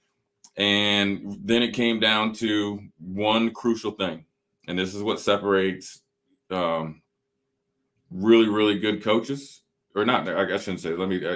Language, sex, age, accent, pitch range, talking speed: English, male, 30-49, American, 90-105 Hz, 135 wpm